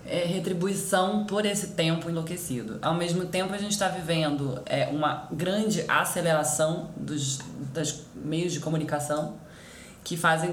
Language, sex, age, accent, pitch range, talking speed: Portuguese, female, 20-39, Brazilian, 145-175 Hz, 135 wpm